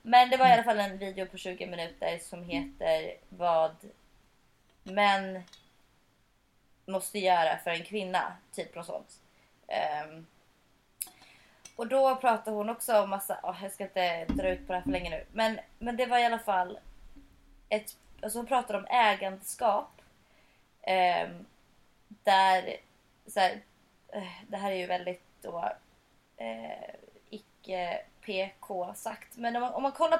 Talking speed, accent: 150 wpm, native